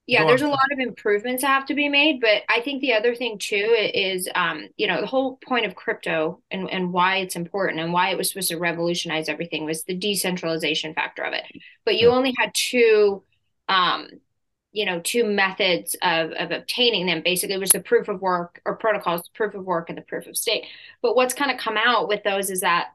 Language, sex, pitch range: English, female, 180-225 Hz